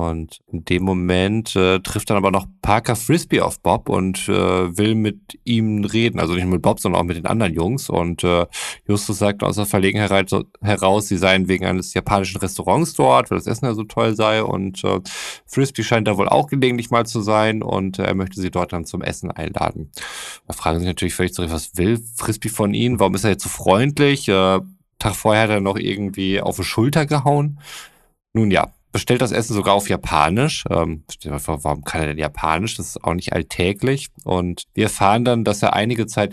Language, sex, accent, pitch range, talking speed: German, male, German, 90-115 Hz, 215 wpm